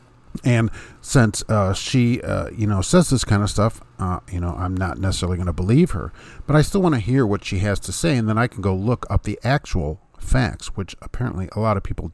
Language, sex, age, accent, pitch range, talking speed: English, male, 50-69, American, 90-110 Hz, 240 wpm